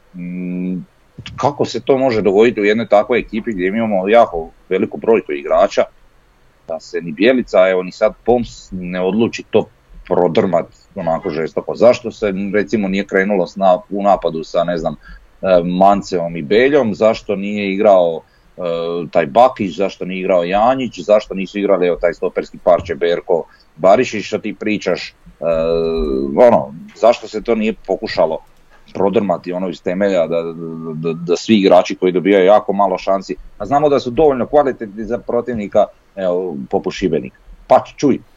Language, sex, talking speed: Croatian, male, 150 wpm